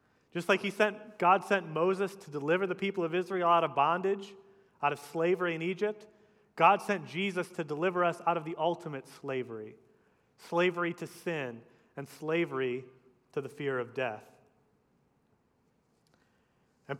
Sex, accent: male, American